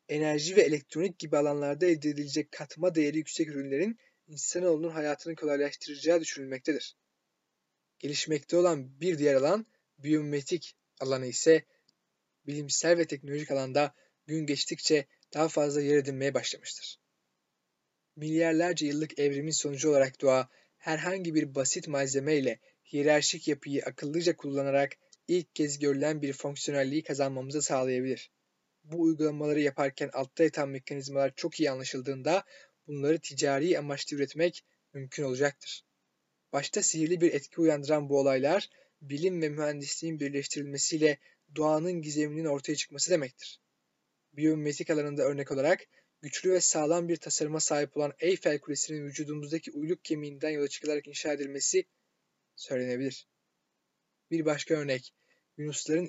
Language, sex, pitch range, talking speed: Turkish, male, 140-160 Hz, 120 wpm